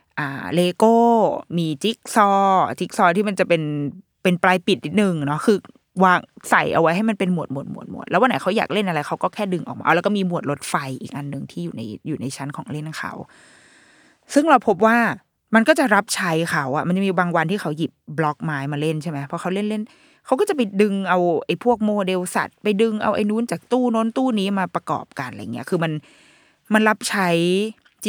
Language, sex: Thai, female